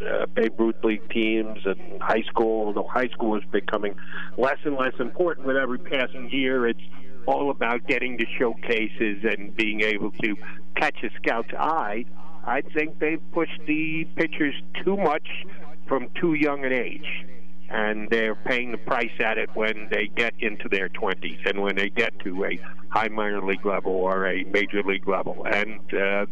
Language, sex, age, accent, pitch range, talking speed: English, male, 50-69, American, 105-135 Hz, 180 wpm